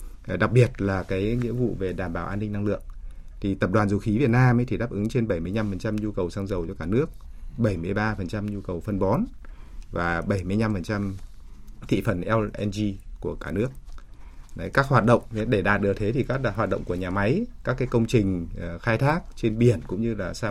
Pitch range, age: 90-115 Hz, 20-39